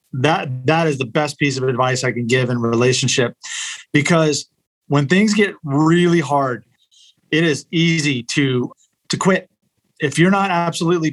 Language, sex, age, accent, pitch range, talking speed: English, male, 40-59, American, 140-180 Hz, 155 wpm